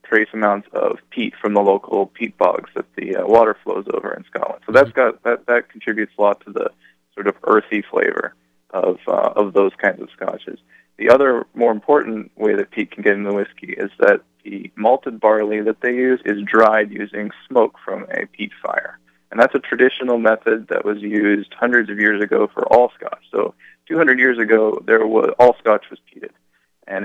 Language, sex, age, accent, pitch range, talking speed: English, male, 20-39, American, 100-110 Hz, 205 wpm